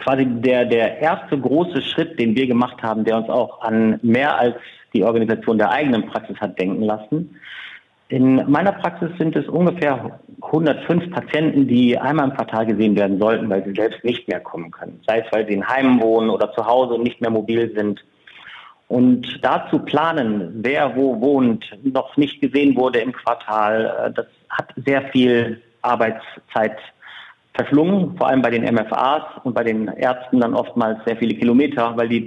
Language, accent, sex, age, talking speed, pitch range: German, German, male, 50-69, 175 wpm, 115-145 Hz